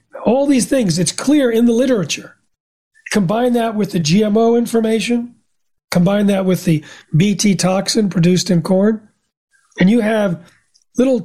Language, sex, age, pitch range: English, male, 40-59, 165-215 Hz